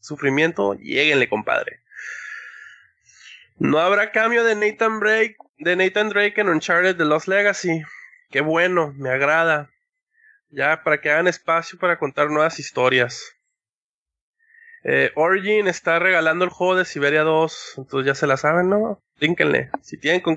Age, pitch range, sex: 20-39, 145-210 Hz, male